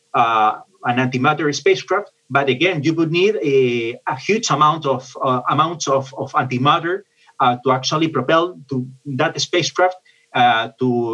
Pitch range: 135-180 Hz